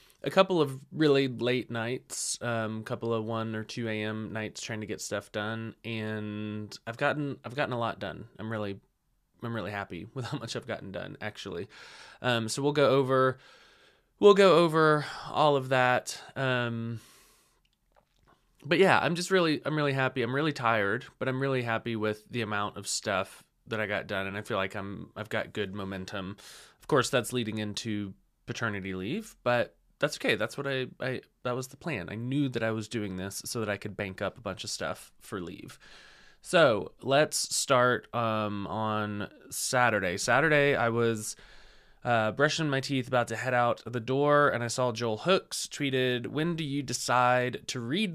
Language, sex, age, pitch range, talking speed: English, male, 20-39, 110-135 Hz, 190 wpm